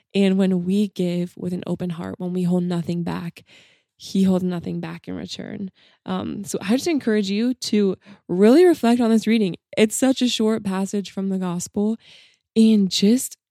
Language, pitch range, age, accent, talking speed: English, 175-210 Hz, 20-39, American, 180 wpm